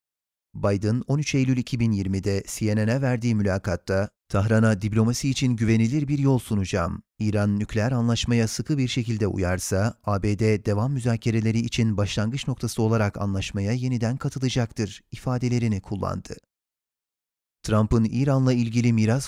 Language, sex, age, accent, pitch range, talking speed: Turkish, male, 30-49, native, 105-130 Hz, 115 wpm